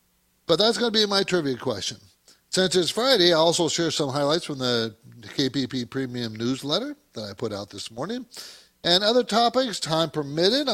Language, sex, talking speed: English, male, 180 wpm